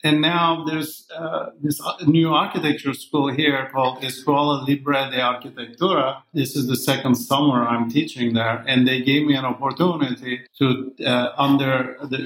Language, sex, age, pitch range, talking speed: English, male, 50-69, 130-150 Hz, 155 wpm